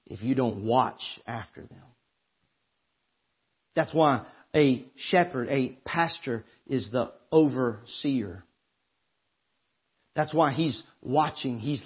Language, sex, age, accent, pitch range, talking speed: English, male, 50-69, American, 130-170 Hz, 100 wpm